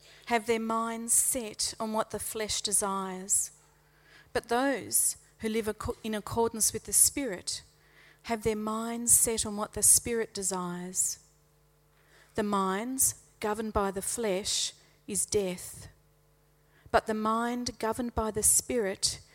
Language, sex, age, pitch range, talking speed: English, female, 40-59, 190-225 Hz, 130 wpm